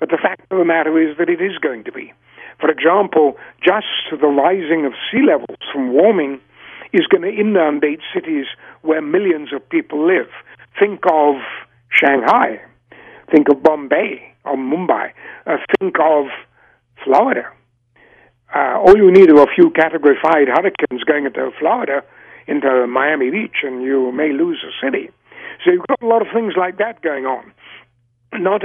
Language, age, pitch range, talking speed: English, 60-79, 140-230 Hz, 165 wpm